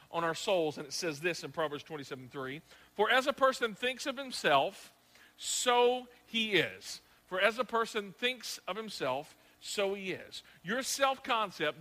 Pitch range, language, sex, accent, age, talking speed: 150-230 Hz, English, male, American, 50-69, 170 wpm